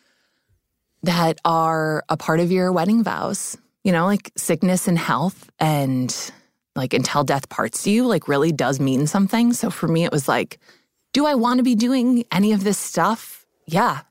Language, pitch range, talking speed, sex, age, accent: English, 155-205 Hz, 180 wpm, female, 20-39, American